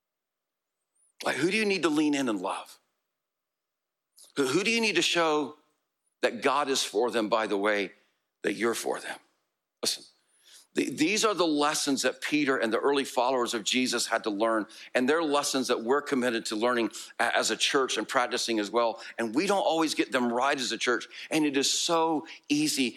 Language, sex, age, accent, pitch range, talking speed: English, male, 60-79, American, 130-170 Hz, 200 wpm